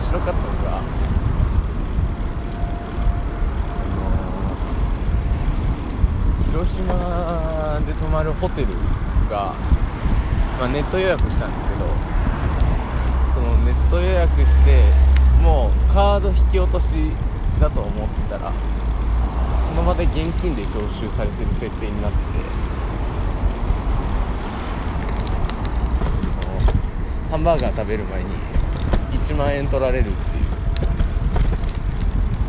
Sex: male